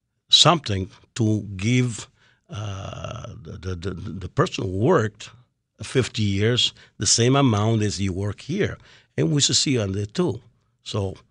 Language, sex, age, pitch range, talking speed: English, male, 60-79, 100-125 Hz, 150 wpm